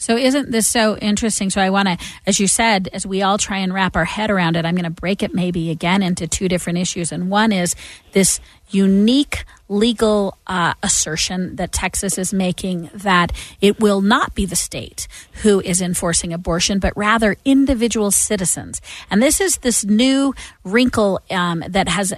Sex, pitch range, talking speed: female, 175-205 Hz, 185 wpm